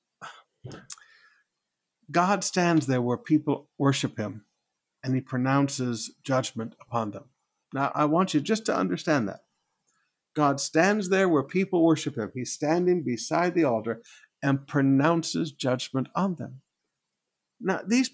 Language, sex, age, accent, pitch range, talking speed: English, male, 60-79, American, 140-195 Hz, 130 wpm